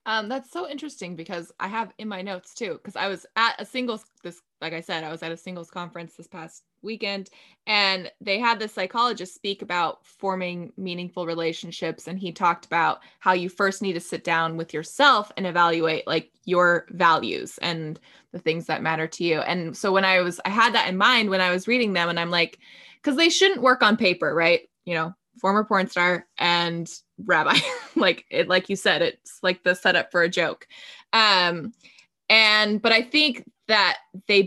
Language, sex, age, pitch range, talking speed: English, female, 20-39, 170-205 Hz, 200 wpm